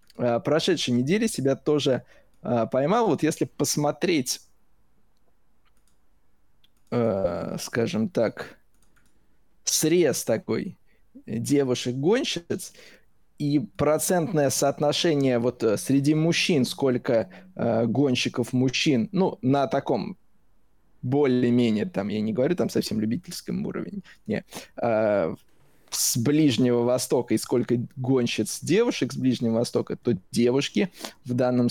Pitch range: 120-150 Hz